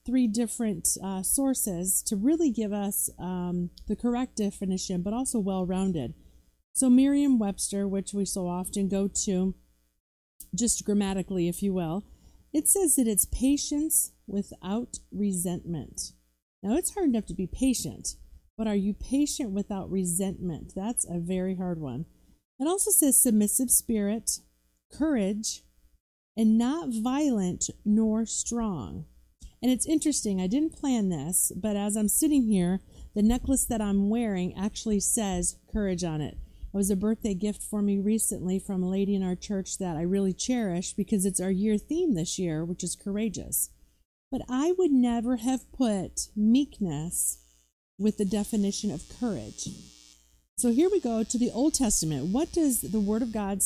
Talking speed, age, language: 155 wpm, 30-49, English